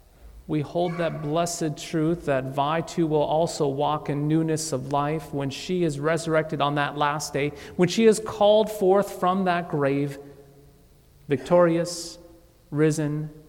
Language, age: English, 40-59